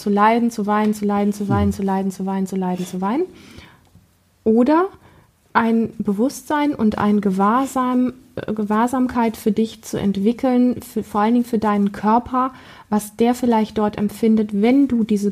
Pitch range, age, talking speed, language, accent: 200-235 Hz, 30-49, 165 wpm, German, German